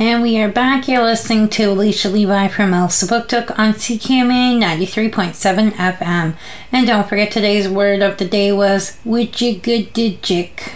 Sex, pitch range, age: female, 195-225 Hz, 30-49